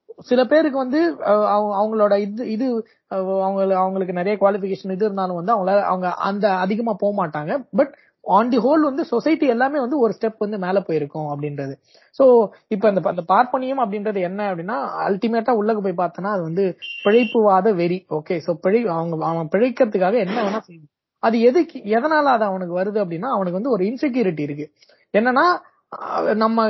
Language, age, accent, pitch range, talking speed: Tamil, 20-39, native, 175-230 Hz, 85 wpm